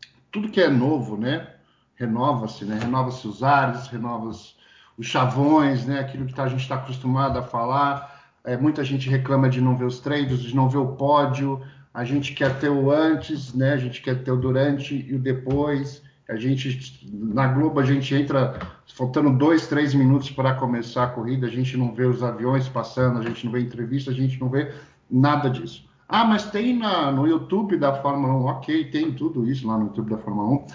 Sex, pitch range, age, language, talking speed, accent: male, 125-145 Hz, 50-69, Portuguese, 200 wpm, Brazilian